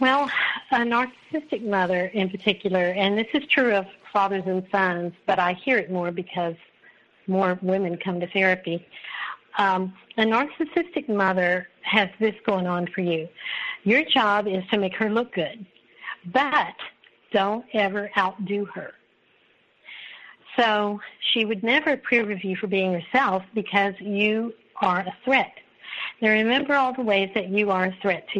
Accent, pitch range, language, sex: American, 185-230 Hz, English, female